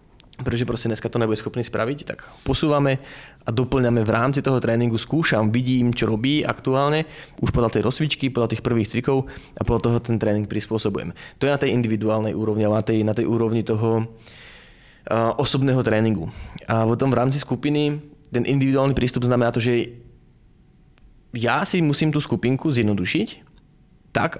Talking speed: 165 wpm